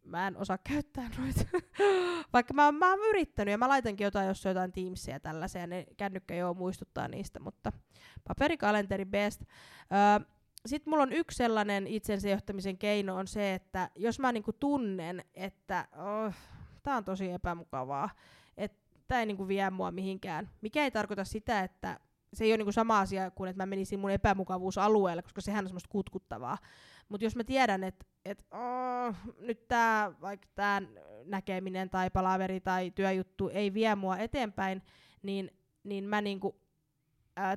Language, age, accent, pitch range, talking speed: Finnish, 20-39, native, 190-215 Hz, 155 wpm